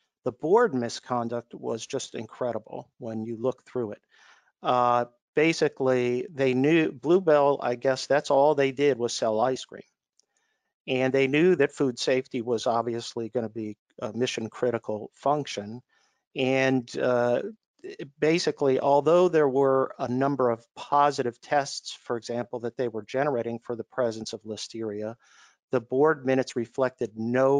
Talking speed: 145 wpm